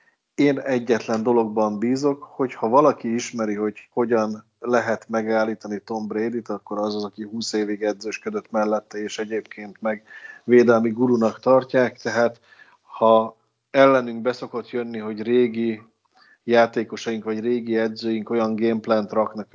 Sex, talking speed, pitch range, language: male, 130 wpm, 110-120 Hz, Hungarian